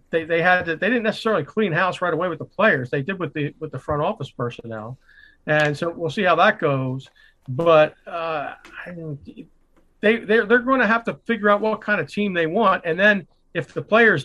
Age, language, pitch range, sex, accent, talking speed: 40-59, English, 145-190 Hz, male, American, 230 wpm